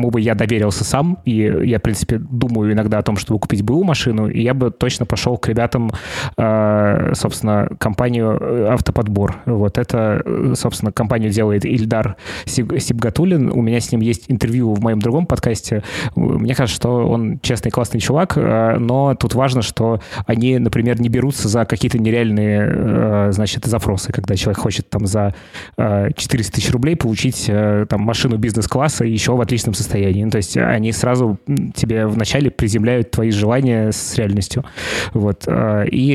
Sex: male